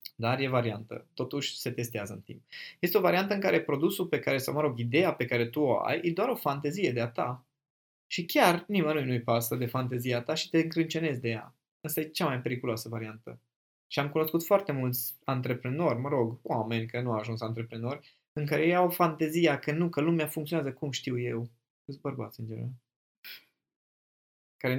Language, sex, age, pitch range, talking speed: Romanian, male, 20-39, 120-165 Hz, 200 wpm